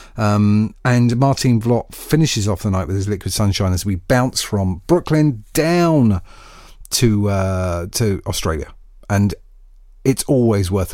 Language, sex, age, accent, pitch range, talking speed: English, male, 40-59, British, 95-120 Hz, 145 wpm